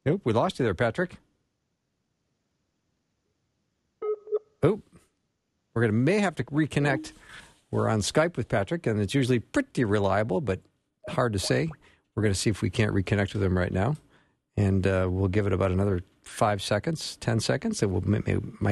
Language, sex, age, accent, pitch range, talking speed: English, male, 50-69, American, 95-130 Hz, 170 wpm